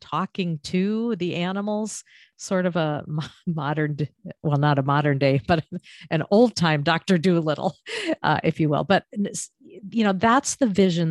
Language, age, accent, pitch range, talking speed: English, 50-69, American, 150-185 Hz, 145 wpm